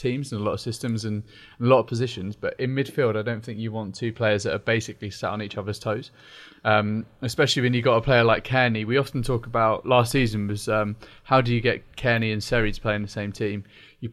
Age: 20-39